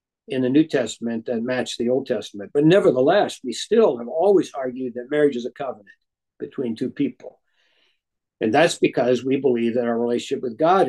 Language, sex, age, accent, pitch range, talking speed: English, male, 60-79, American, 130-165 Hz, 185 wpm